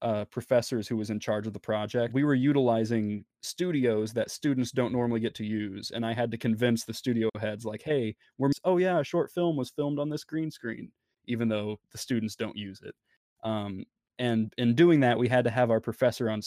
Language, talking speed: English, 220 wpm